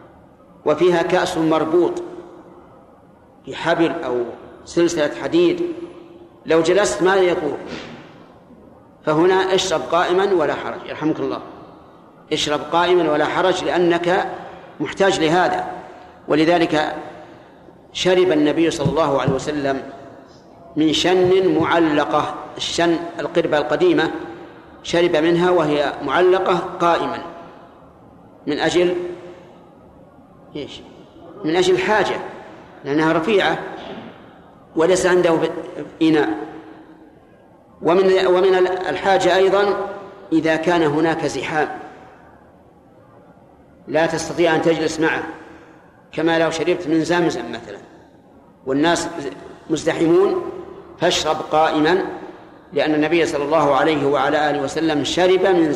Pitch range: 155-185 Hz